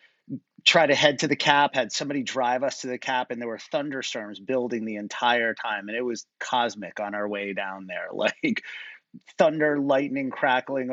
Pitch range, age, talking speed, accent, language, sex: 120-140 Hz, 30-49, 185 wpm, American, English, male